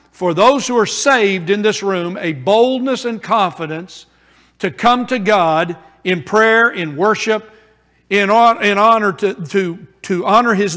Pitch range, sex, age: 165-210 Hz, male, 60-79